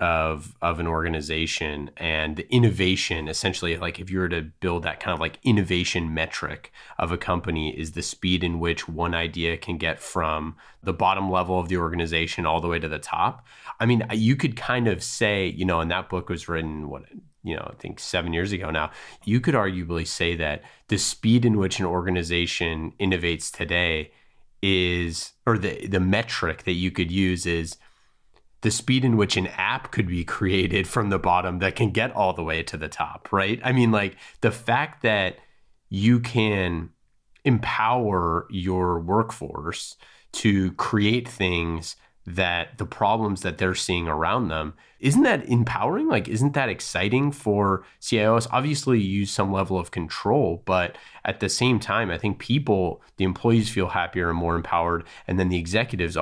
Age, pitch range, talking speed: 30-49, 85-105 Hz, 180 wpm